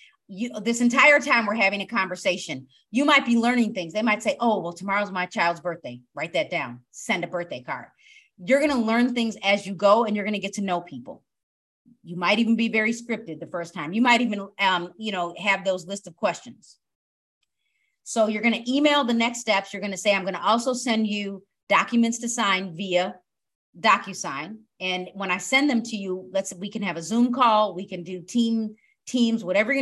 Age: 30-49